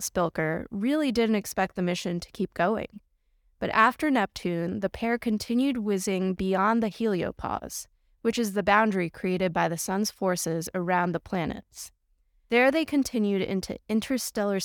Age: 20-39